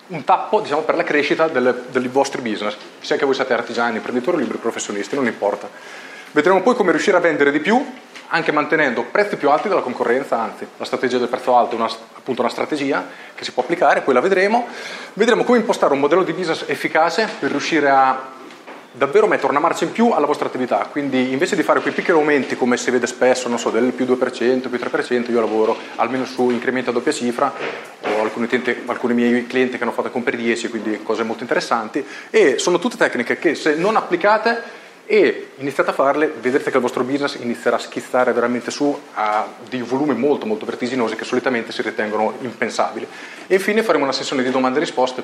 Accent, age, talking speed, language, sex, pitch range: native, 30-49, 210 wpm, Italian, male, 120-160 Hz